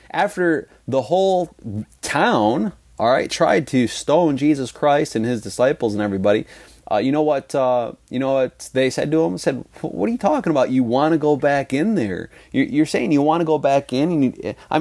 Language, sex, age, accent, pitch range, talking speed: English, male, 30-49, American, 115-155 Hz, 205 wpm